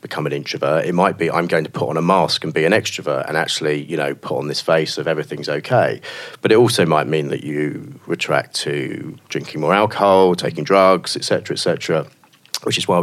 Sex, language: male, English